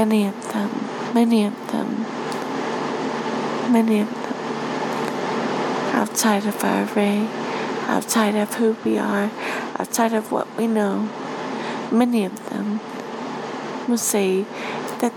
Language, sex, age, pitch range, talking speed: English, female, 40-59, 215-250 Hz, 115 wpm